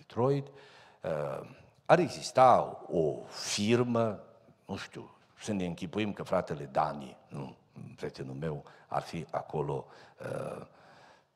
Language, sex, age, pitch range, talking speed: Romanian, male, 50-69, 120-185 Hz, 100 wpm